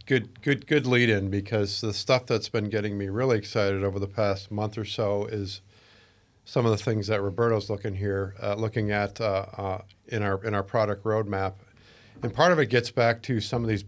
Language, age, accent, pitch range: English, 50-69, American, 105-120 Hz